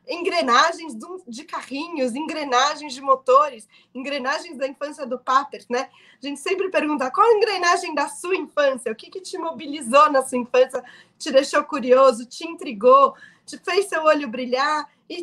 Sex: female